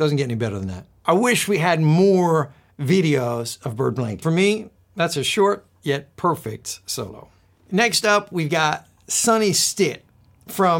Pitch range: 145-195 Hz